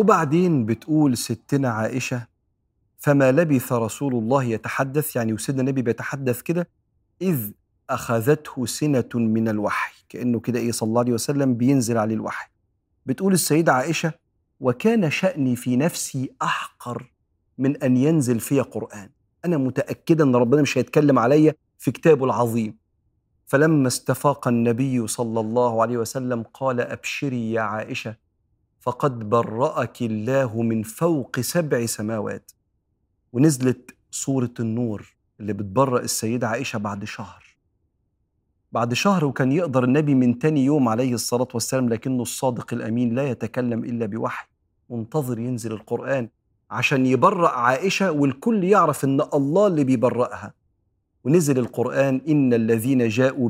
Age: 40-59